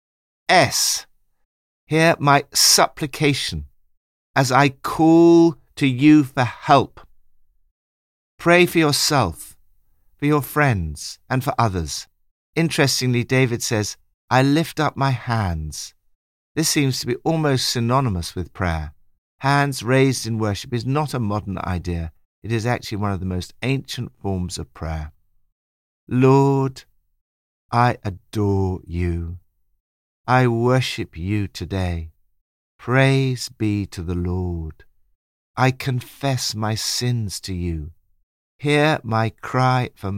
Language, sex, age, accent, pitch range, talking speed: English, male, 50-69, British, 85-135 Hz, 115 wpm